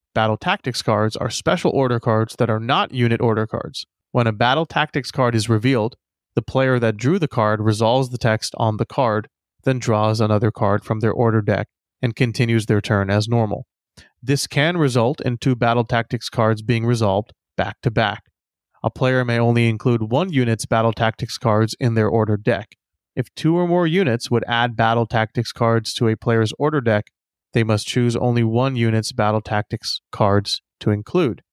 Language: English